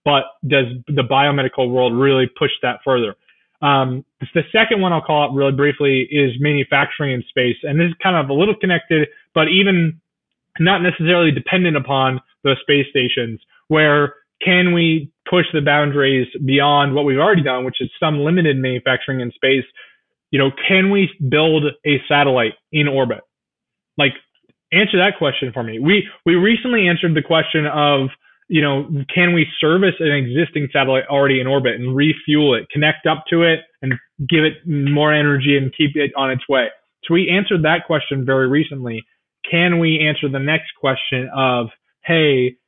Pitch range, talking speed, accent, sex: 135-160 Hz, 175 wpm, American, male